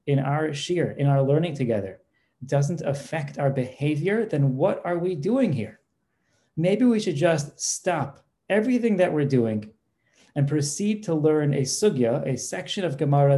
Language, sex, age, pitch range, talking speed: English, male, 40-59, 130-155 Hz, 160 wpm